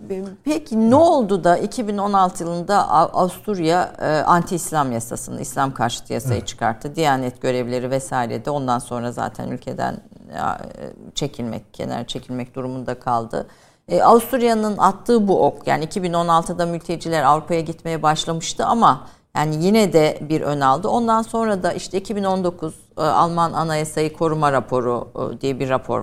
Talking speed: 130 wpm